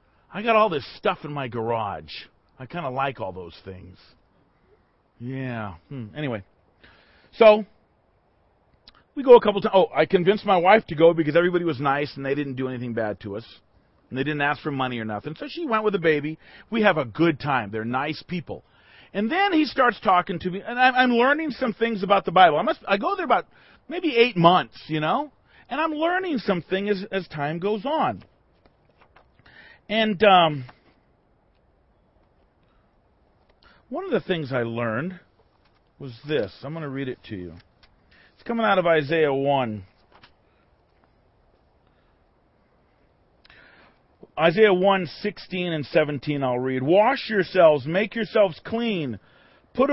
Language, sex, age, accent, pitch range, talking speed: English, male, 40-59, American, 125-210 Hz, 165 wpm